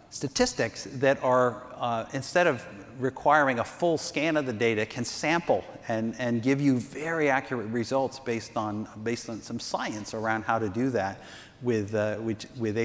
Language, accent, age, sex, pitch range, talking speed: English, American, 50-69, male, 115-150 Hz, 175 wpm